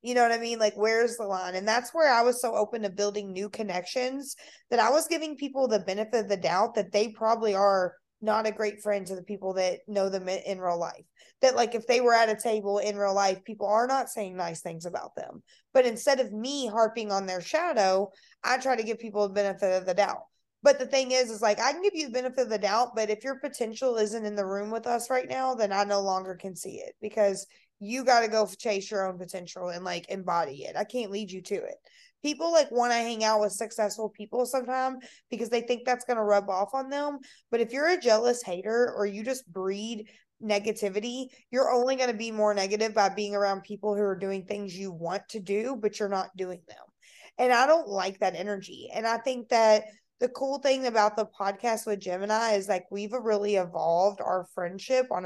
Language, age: English, 20-39